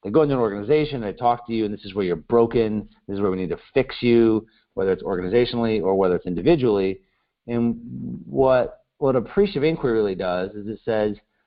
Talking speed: 210 wpm